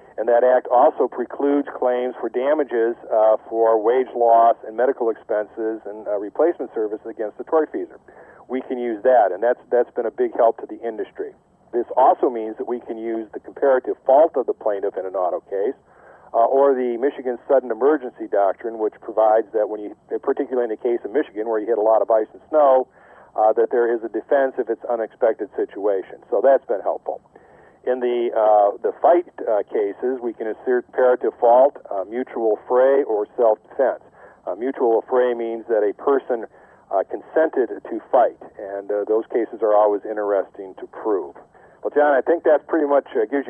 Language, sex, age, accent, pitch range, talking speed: English, male, 50-69, American, 110-145 Hz, 190 wpm